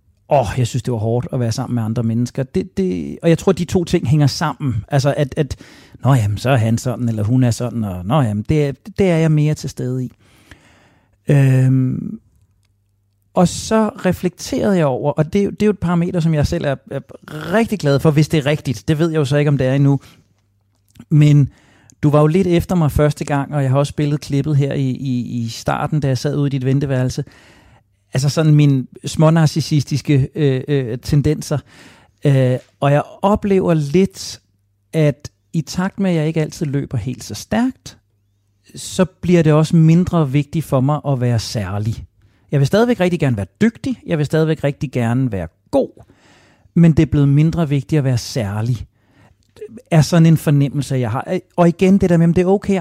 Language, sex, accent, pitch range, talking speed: Danish, male, native, 120-160 Hz, 205 wpm